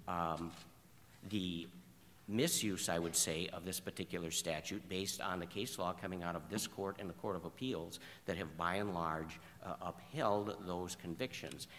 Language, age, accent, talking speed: English, 50-69, American, 175 wpm